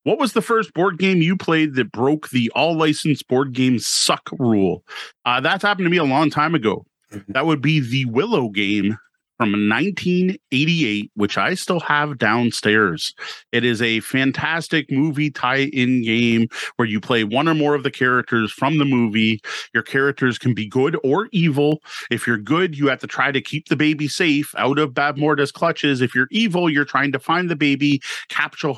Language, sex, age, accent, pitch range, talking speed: English, male, 30-49, American, 120-150 Hz, 190 wpm